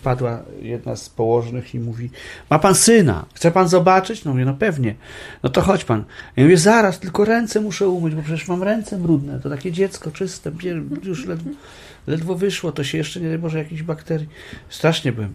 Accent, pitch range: native, 105-160 Hz